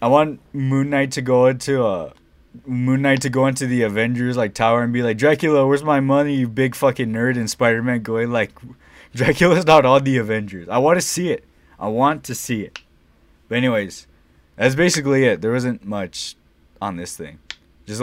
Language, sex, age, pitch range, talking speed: English, male, 20-39, 95-130 Hz, 200 wpm